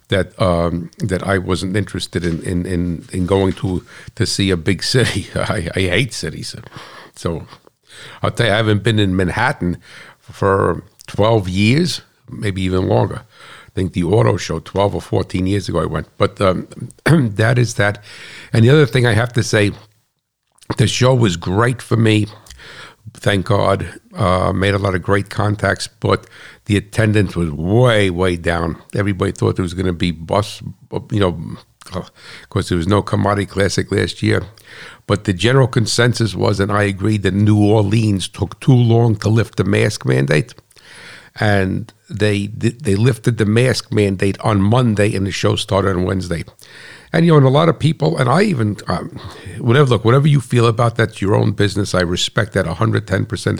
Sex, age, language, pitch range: male, 60-79, English, 95-115 Hz